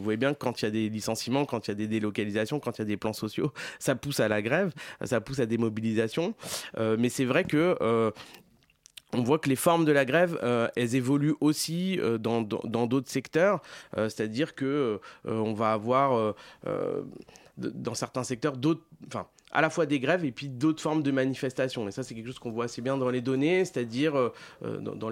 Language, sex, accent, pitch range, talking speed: French, male, French, 120-145 Hz, 225 wpm